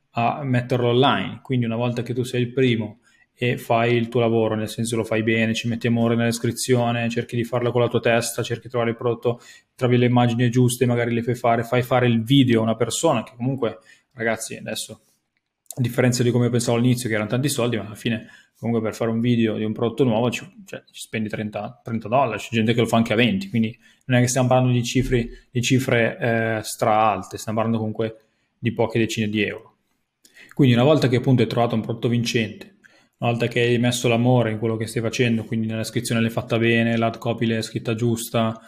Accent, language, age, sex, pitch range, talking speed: native, Italian, 20-39, male, 115-125 Hz, 225 wpm